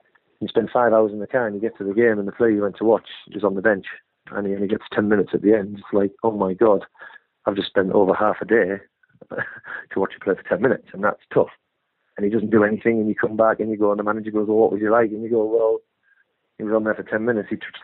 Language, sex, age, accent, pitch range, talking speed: English, male, 40-59, British, 105-140 Hz, 300 wpm